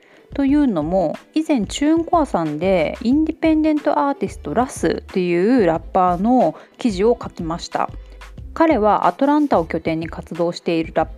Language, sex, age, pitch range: Japanese, female, 30-49, 180-280 Hz